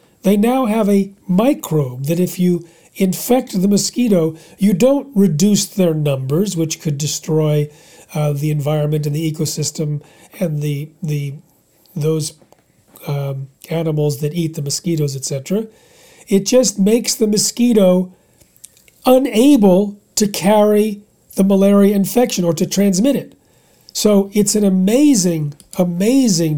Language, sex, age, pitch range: English, male, 40-59, 155-200 Hz